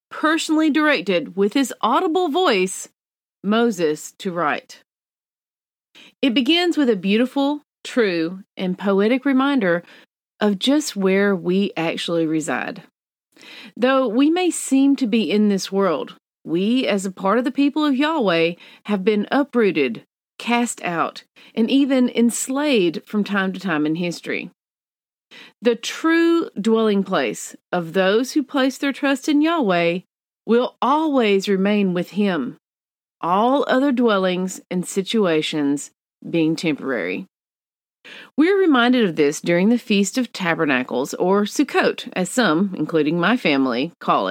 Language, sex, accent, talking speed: English, female, American, 130 wpm